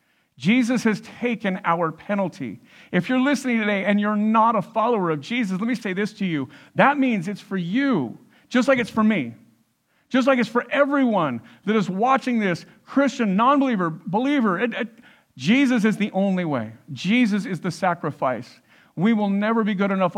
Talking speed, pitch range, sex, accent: 180 wpm, 160-220 Hz, male, American